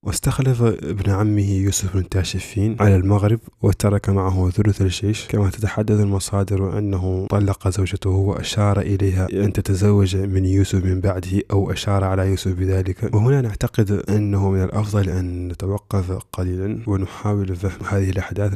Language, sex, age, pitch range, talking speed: Arabic, male, 20-39, 95-105 Hz, 140 wpm